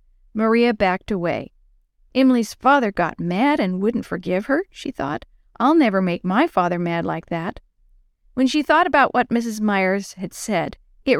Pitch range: 180-255 Hz